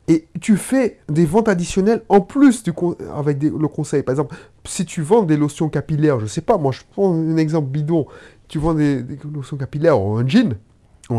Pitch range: 125-175 Hz